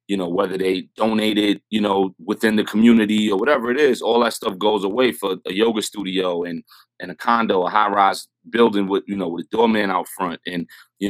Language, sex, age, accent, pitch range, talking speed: English, male, 30-49, American, 95-115 Hz, 220 wpm